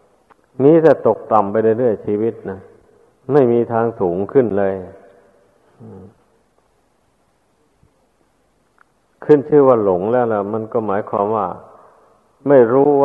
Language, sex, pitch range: Thai, male, 105-125 Hz